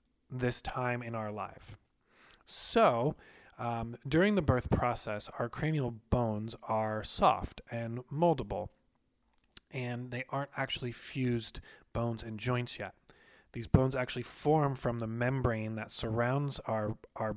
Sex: male